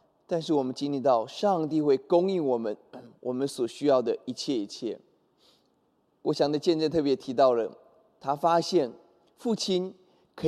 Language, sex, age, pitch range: Chinese, male, 20-39, 130-170 Hz